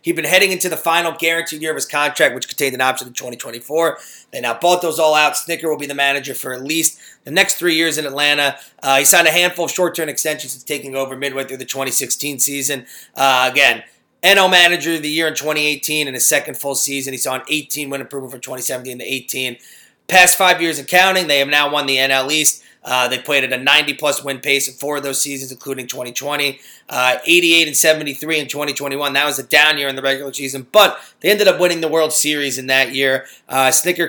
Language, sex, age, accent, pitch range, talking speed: English, male, 30-49, American, 135-155 Hz, 230 wpm